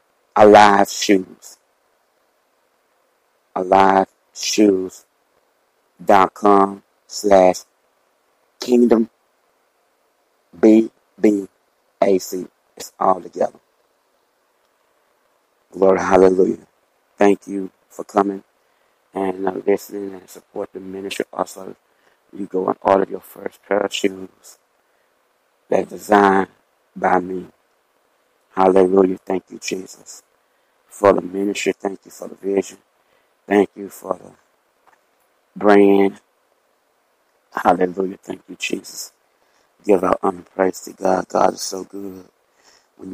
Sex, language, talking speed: male, English, 100 wpm